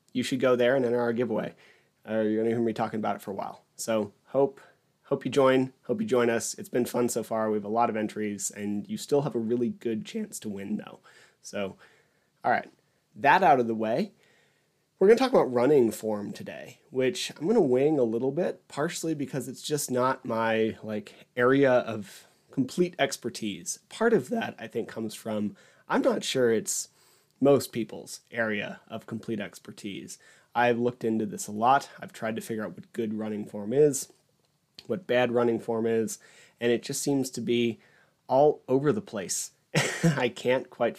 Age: 30-49